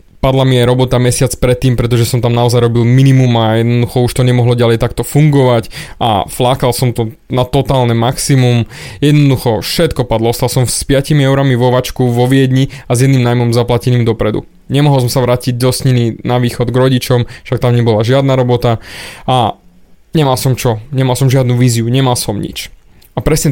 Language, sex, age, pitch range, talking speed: Slovak, male, 20-39, 120-145 Hz, 185 wpm